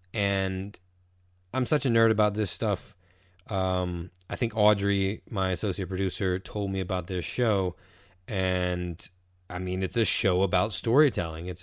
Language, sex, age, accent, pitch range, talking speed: English, male, 20-39, American, 90-115 Hz, 150 wpm